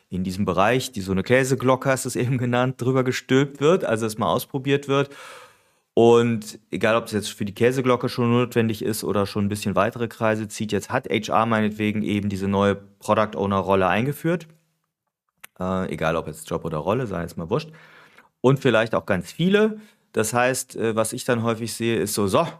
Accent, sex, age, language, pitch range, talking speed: German, male, 40-59, German, 100-125 Hz, 200 wpm